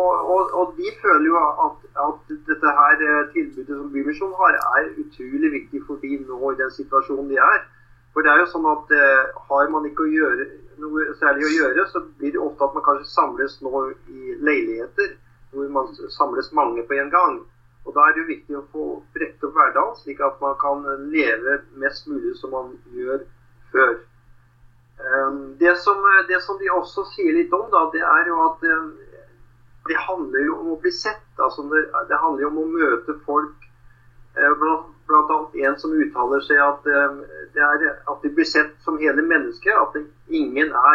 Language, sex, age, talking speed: English, male, 30-49, 195 wpm